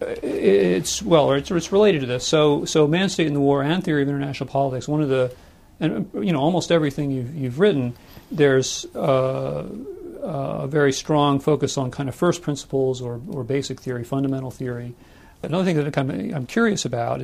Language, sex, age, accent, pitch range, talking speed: English, male, 40-59, American, 125-145 Hz, 190 wpm